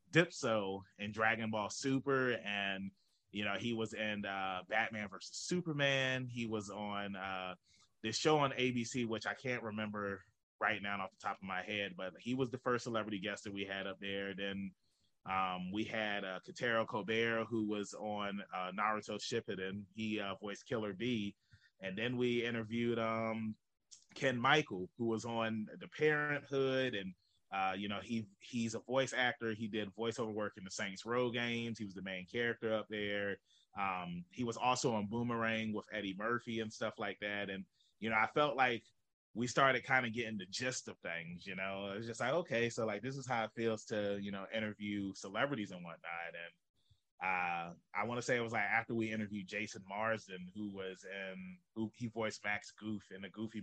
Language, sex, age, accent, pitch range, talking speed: English, male, 30-49, American, 100-115 Hz, 195 wpm